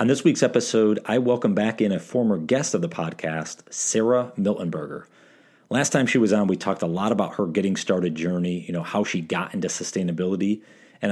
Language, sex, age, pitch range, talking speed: English, male, 40-59, 85-115 Hz, 205 wpm